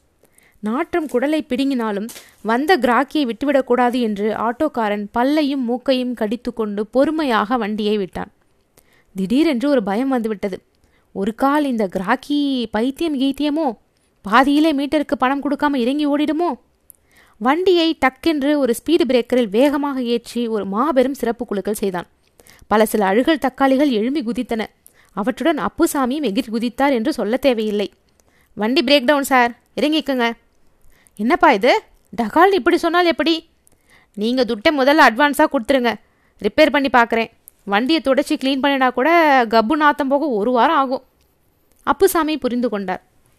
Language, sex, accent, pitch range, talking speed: Tamil, female, native, 235-300 Hz, 120 wpm